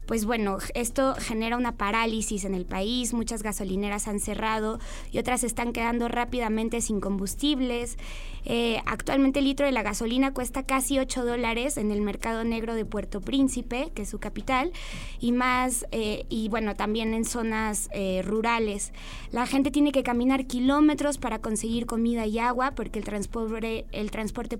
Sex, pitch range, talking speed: female, 215-255 Hz, 165 wpm